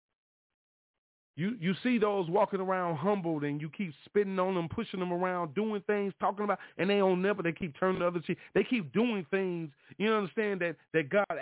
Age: 40-59